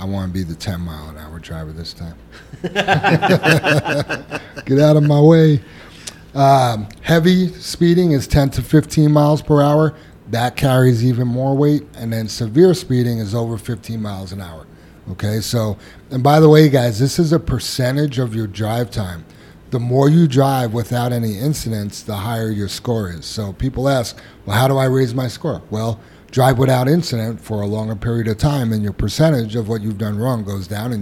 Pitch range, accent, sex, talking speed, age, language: 110-140 Hz, American, male, 195 wpm, 30-49, English